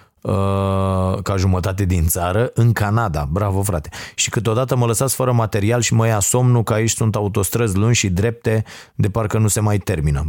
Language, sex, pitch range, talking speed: Romanian, male, 95-115 Hz, 180 wpm